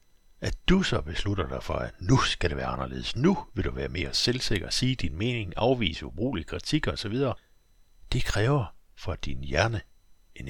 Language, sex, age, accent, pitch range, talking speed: Danish, male, 60-79, native, 80-120 Hz, 185 wpm